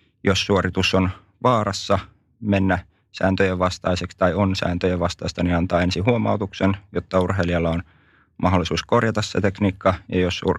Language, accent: Finnish, native